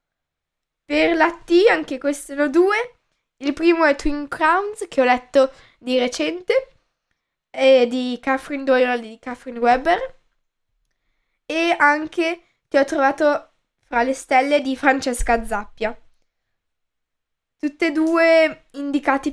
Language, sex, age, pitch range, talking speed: Italian, female, 10-29, 235-300 Hz, 125 wpm